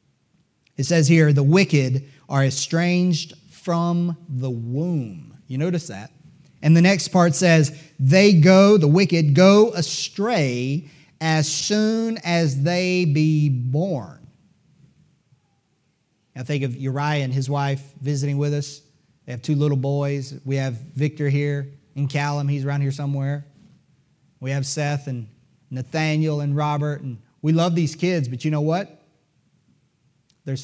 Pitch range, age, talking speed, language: 135-165 Hz, 30-49, 140 wpm, English